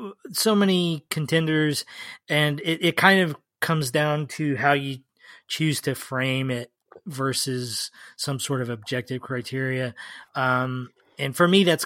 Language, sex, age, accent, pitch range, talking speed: English, male, 20-39, American, 130-150 Hz, 140 wpm